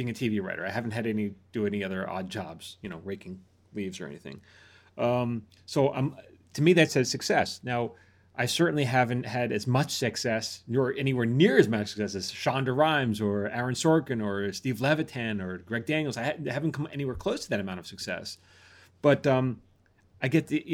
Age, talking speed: 30-49, 195 wpm